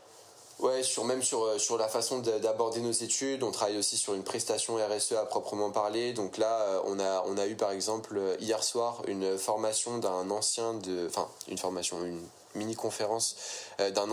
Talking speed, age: 180 wpm, 20-39